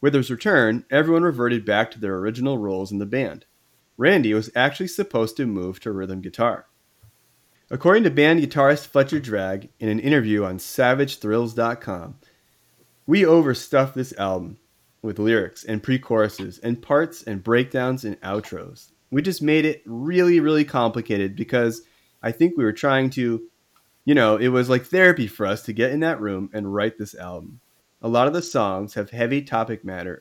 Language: English